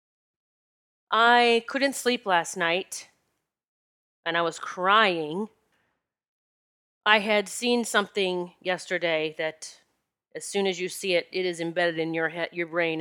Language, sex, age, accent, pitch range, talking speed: English, female, 30-49, American, 170-210 Hz, 135 wpm